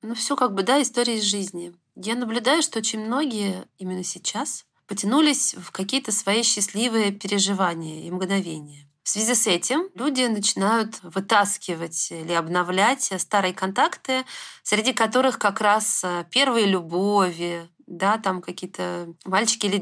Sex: female